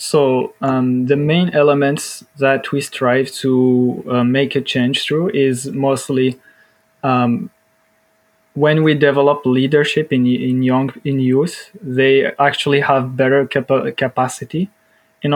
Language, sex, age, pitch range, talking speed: English, male, 20-39, 130-145 Hz, 130 wpm